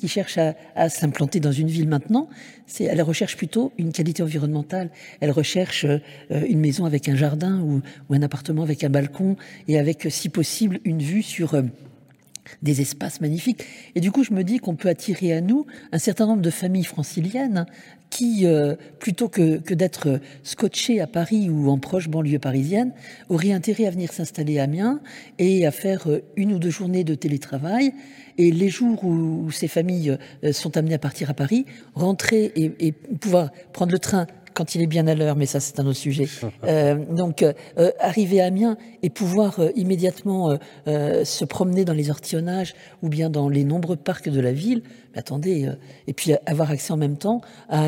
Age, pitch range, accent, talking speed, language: 50-69, 150-195 Hz, French, 200 wpm, French